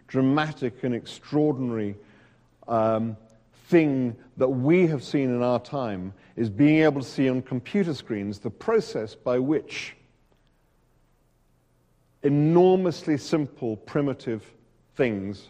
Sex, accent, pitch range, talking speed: male, British, 110-140 Hz, 110 wpm